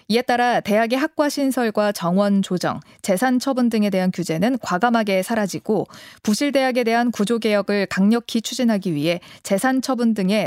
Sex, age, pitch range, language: female, 20-39, 195-255 Hz, Korean